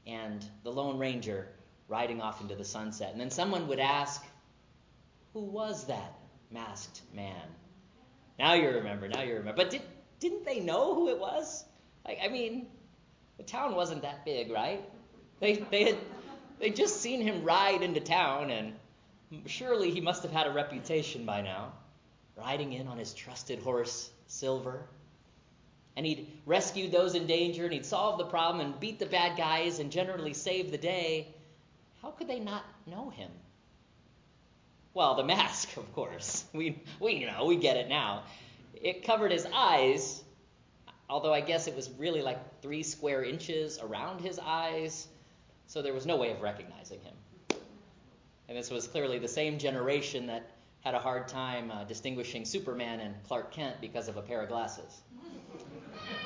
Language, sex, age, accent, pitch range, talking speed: English, male, 30-49, American, 125-180 Hz, 170 wpm